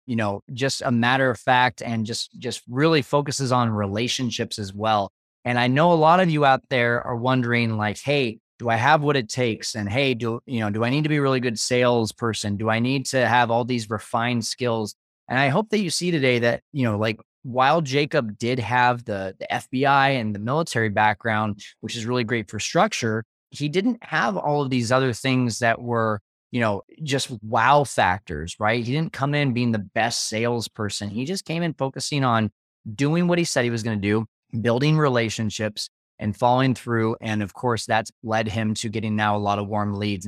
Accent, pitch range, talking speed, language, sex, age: American, 110-135 Hz, 215 wpm, English, male, 20-39